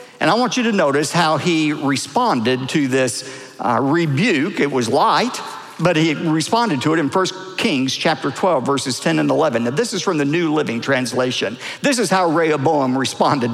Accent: American